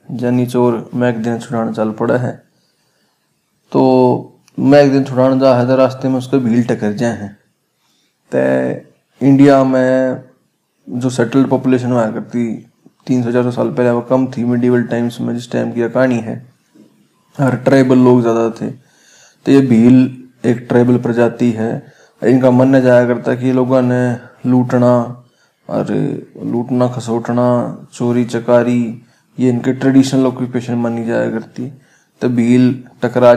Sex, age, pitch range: male, 20-39, 115-130 Hz